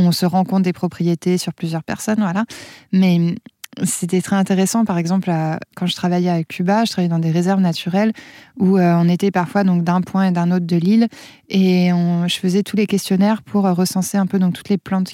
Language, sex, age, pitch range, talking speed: French, female, 20-39, 175-205 Hz, 215 wpm